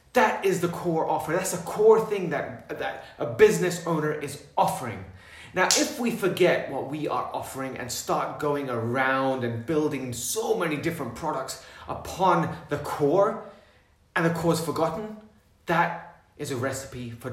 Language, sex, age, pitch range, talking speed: English, male, 30-49, 125-185 Hz, 165 wpm